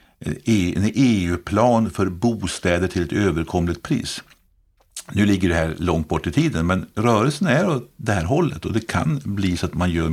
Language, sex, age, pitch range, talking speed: Swedish, male, 50-69, 80-95 Hz, 185 wpm